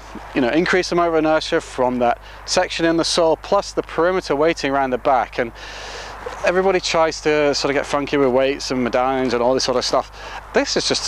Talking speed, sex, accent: 220 wpm, male, British